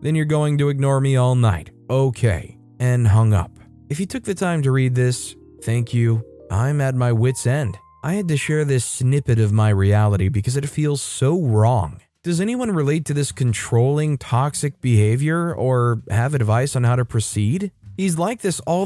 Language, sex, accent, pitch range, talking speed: English, male, American, 115-150 Hz, 190 wpm